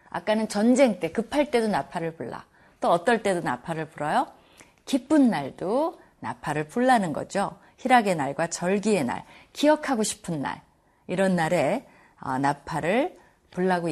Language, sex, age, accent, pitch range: Korean, female, 30-49, native, 160-235 Hz